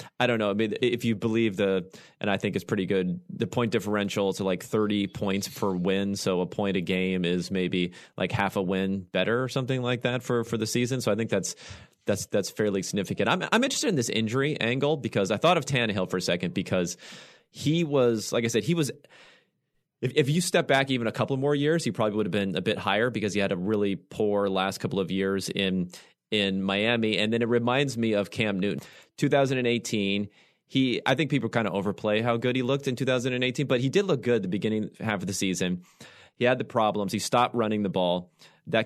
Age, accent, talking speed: 30-49, American, 230 wpm